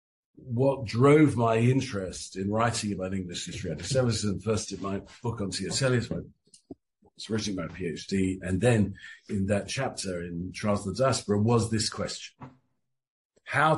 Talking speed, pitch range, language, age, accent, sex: 150 wpm, 95-120 Hz, English, 50-69, British, male